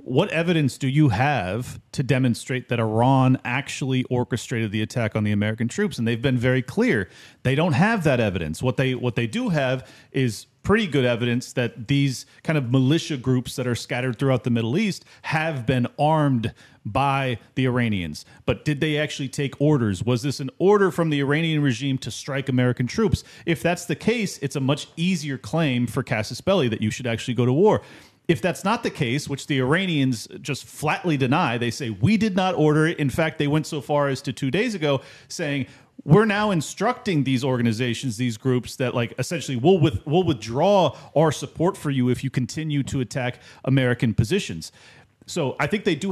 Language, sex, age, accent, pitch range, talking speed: English, male, 40-59, American, 125-155 Hz, 200 wpm